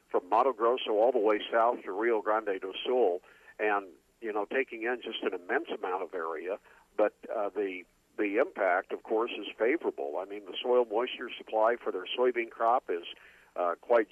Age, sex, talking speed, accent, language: 50-69, male, 190 wpm, American, English